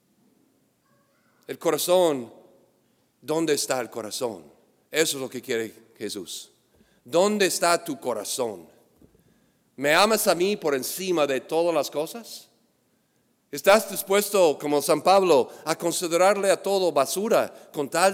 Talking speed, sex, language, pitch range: 125 wpm, male, English, 135-185 Hz